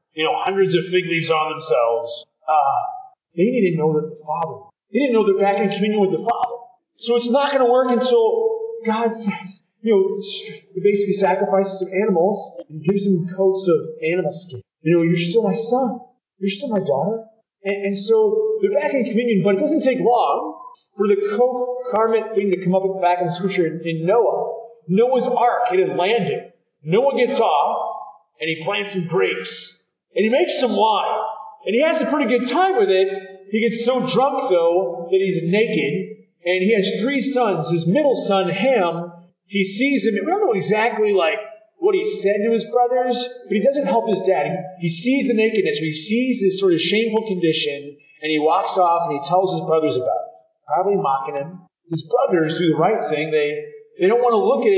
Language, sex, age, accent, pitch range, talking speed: English, male, 40-59, American, 180-245 Hz, 205 wpm